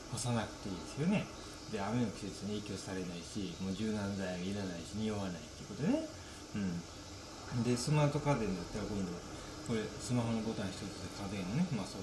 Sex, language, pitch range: male, Japanese, 100-130 Hz